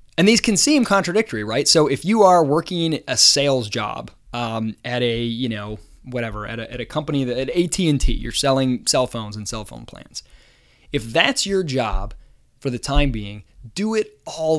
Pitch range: 125-185 Hz